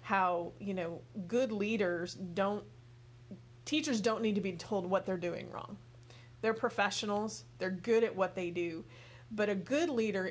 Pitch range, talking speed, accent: 180-215 Hz, 165 wpm, American